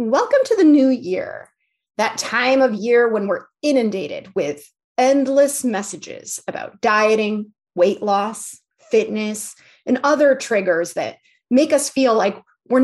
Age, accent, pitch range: 30-49, American, 215-280 Hz